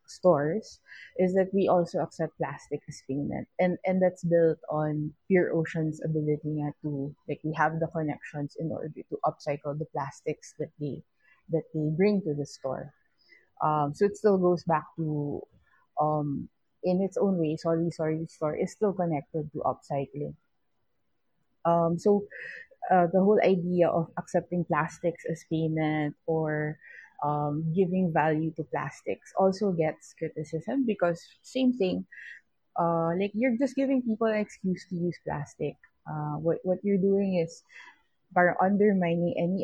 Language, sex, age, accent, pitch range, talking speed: English, female, 20-39, Filipino, 155-185 Hz, 150 wpm